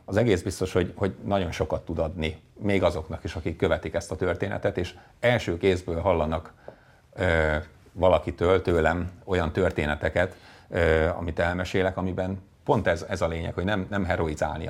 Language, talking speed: Hungarian, 150 wpm